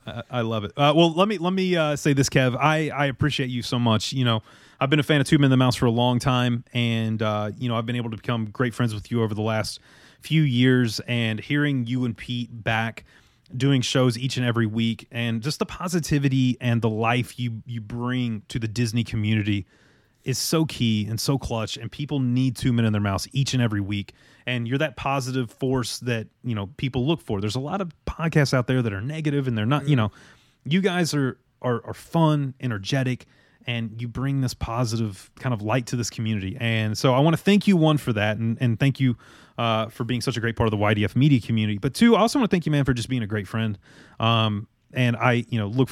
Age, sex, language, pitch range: 30-49, male, English, 115-135 Hz